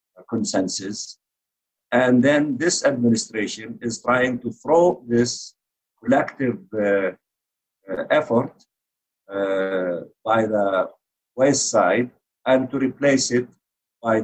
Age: 50-69